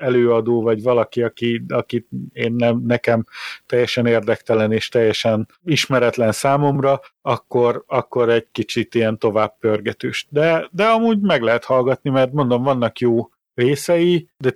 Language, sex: Hungarian, male